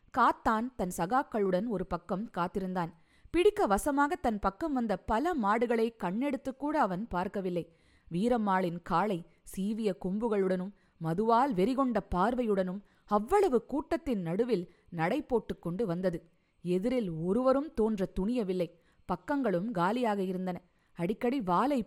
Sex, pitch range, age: female, 185-250 Hz, 20-39